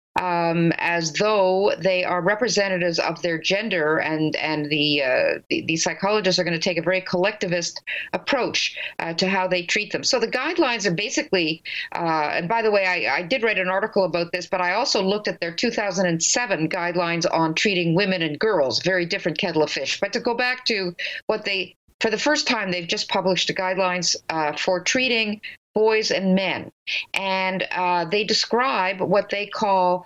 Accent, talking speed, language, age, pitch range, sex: American, 190 wpm, English, 50-69, 175-210 Hz, female